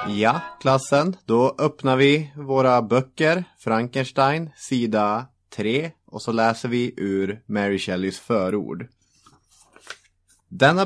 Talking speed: 105 wpm